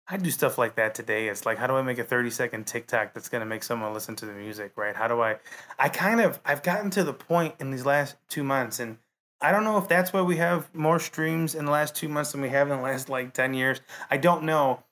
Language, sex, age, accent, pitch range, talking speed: English, male, 30-49, American, 120-140 Hz, 280 wpm